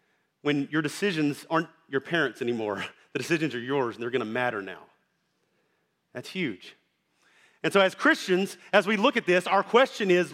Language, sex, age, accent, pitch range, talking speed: English, male, 40-59, American, 160-210 Hz, 180 wpm